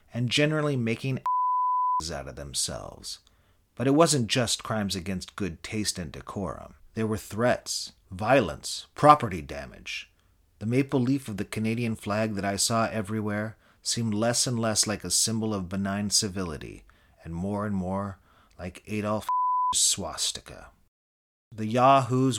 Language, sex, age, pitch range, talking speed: English, male, 40-59, 95-120 Hz, 140 wpm